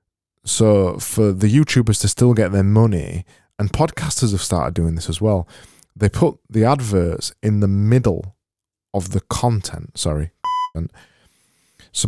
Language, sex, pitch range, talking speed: English, male, 85-115 Hz, 150 wpm